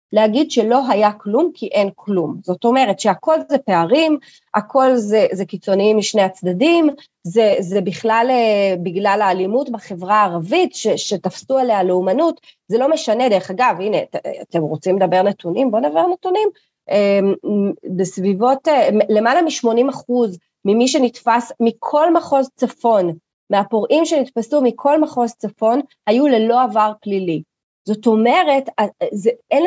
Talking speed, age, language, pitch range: 125 wpm, 30-49, Hebrew, 195-265 Hz